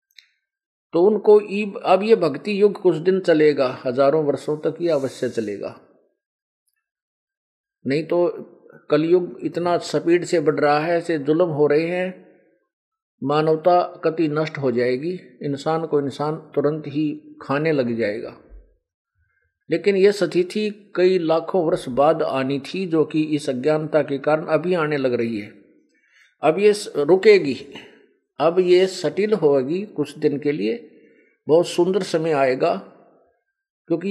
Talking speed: 135 wpm